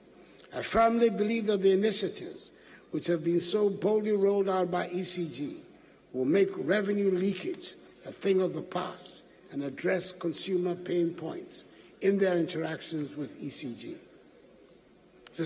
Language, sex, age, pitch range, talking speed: English, male, 60-79, 175-210 Hz, 135 wpm